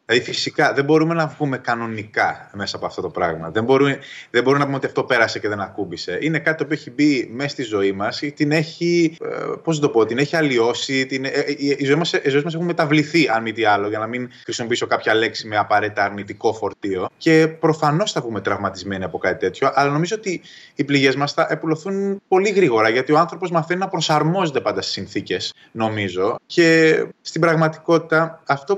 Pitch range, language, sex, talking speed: 135-175 Hz, Greek, male, 180 wpm